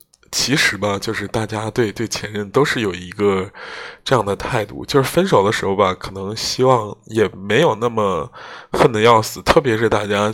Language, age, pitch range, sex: Chinese, 20-39, 100-125 Hz, male